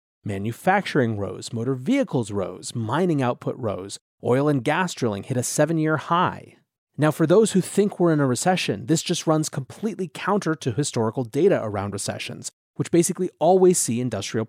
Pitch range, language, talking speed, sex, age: 120-160 Hz, English, 165 wpm, male, 30-49